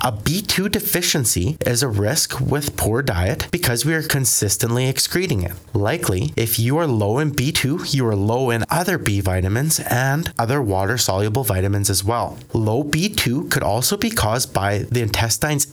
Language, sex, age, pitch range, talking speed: English, male, 30-49, 105-145 Hz, 170 wpm